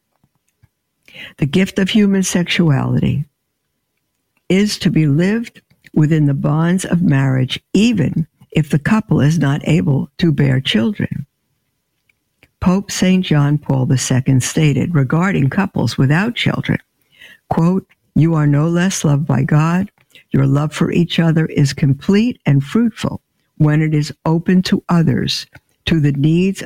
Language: English